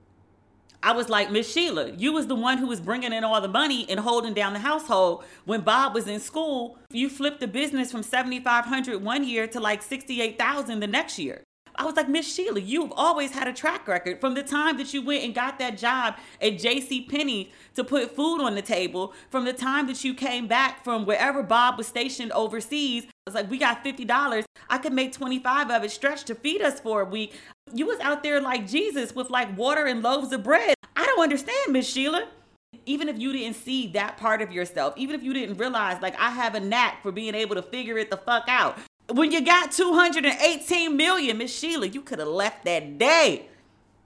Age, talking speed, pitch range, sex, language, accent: 40-59, 220 wpm, 210-275 Hz, female, English, American